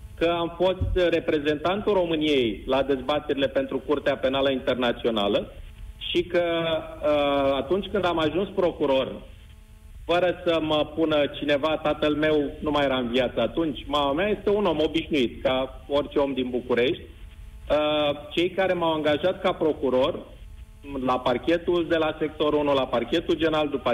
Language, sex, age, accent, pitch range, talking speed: Romanian, male, 40-59, native, 140-175 Hz, 145 wpm